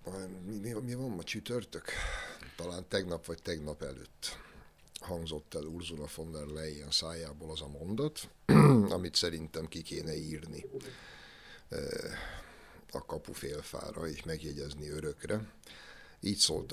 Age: 60-79